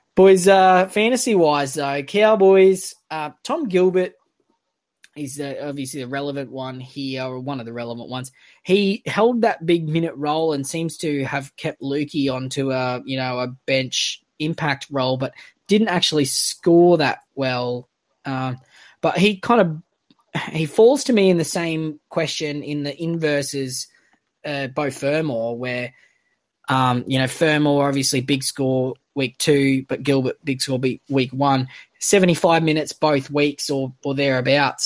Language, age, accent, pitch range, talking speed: English, 20-39, Australian, 130-155 Hz, 160 wpm